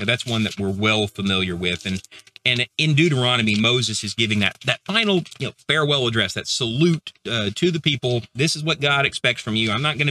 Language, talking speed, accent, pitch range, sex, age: English, 210 wpm, American, 105-145 Hz, male, 40-59